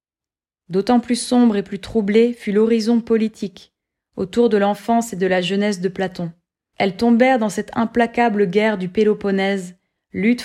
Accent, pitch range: French, 190-225 Hz